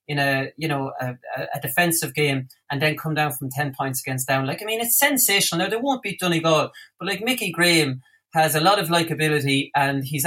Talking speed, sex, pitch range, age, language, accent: 220 wpm, male, 140-180 Hz, 30-49, English, Irish